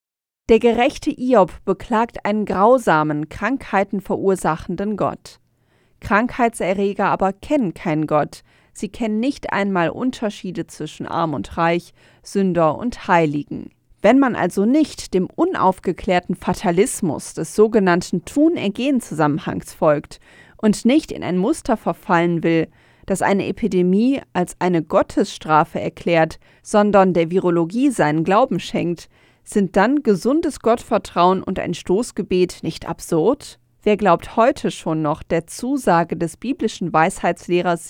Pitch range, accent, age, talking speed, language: 170-225 Hz, German, 30-49, 120 wpm, German